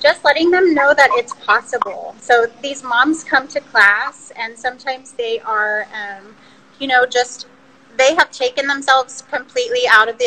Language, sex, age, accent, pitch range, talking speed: English, female, 30-49, American, 235-280 Hz, 170 wpm